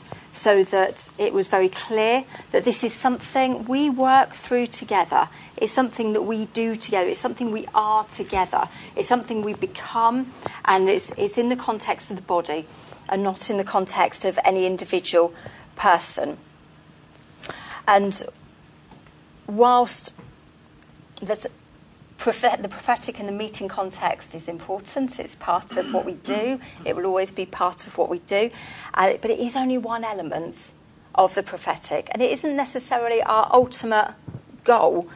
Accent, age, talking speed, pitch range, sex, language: British, 40-59, 155 wpm, 190-245 Hz, female, English